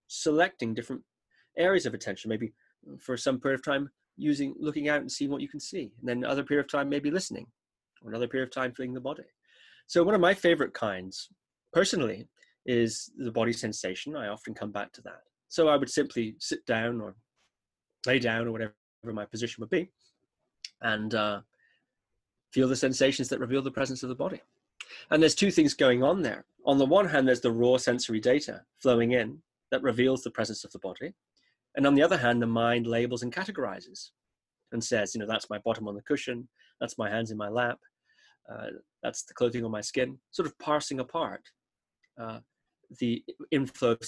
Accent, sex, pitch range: British, male, 115-145 Hz